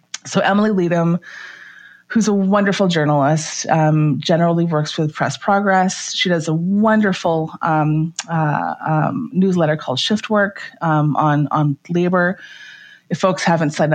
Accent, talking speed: American, 140 wpm